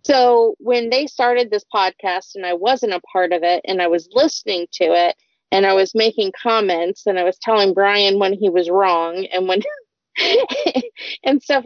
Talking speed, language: 190 wpm, English